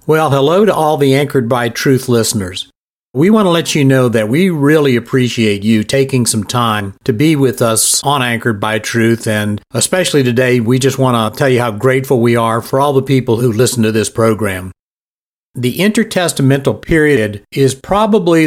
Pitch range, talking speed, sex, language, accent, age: 115-140 Hz, 190 wpm, male, English, American, 50-69